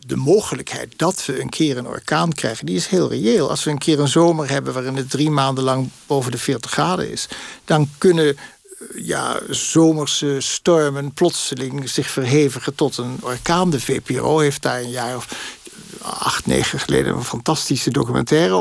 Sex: male